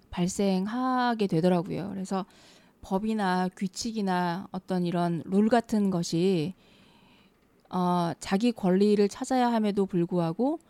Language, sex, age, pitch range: Korean, female, 20-39, 180-220 Hz